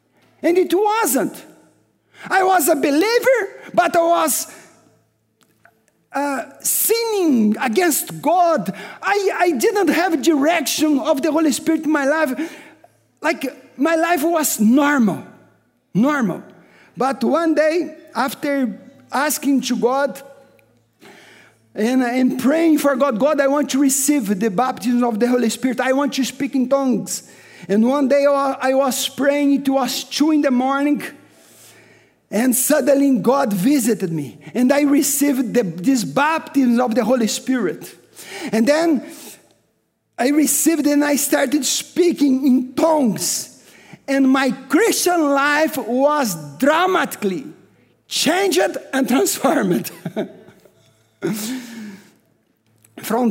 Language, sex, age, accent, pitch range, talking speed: English, male, 50-69, Brazilian, 255-310 Hz, 120 wpm